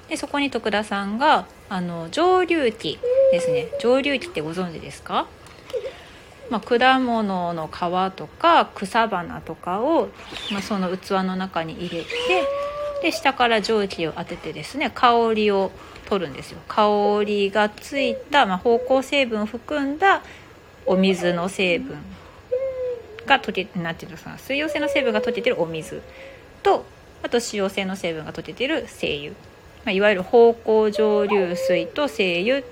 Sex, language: female, Japanese